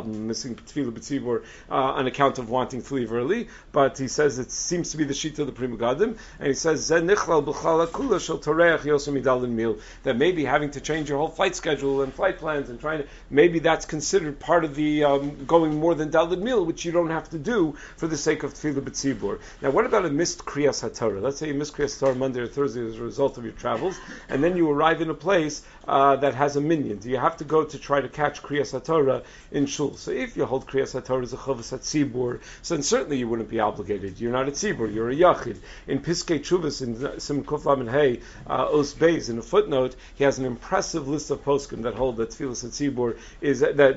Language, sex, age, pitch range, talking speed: English, male, 50-69, 130-155 Hz, 220 wpm